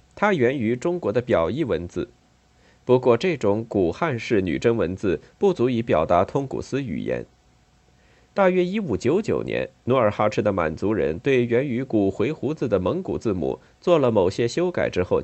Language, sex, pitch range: Chinese, male, 105-150 Hz